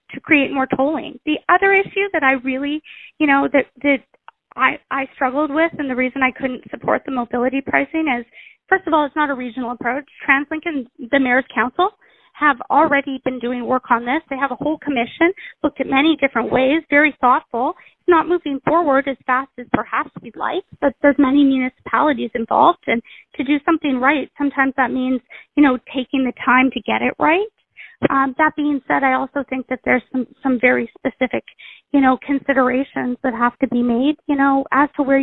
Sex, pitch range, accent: female, 255-295 Hz, American